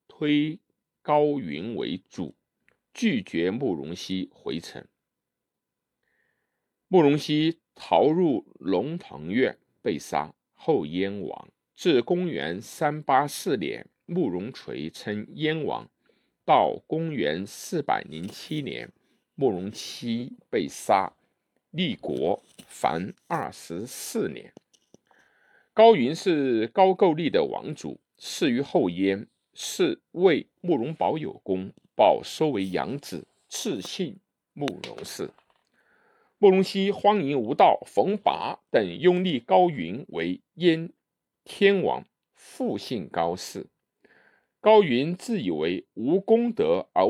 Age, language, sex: 50-69, Chinese, male